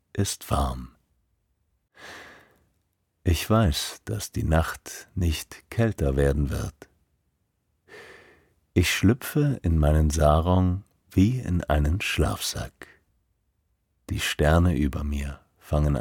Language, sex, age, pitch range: German, male, 50-69, 80-95 Hz